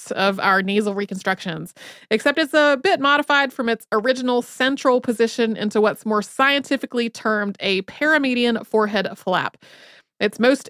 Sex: female